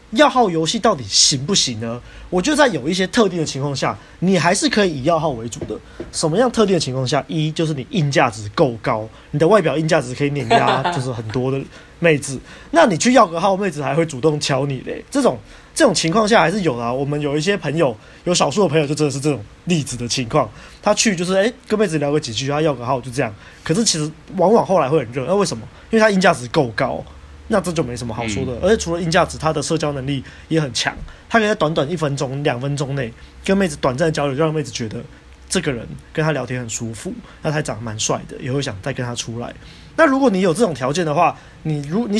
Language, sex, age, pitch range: Chinese, male, 20-39, 135-185 Hz